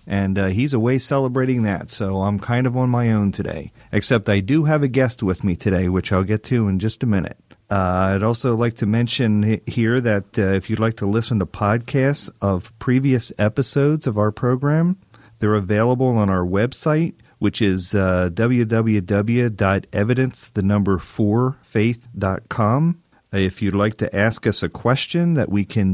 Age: 40-59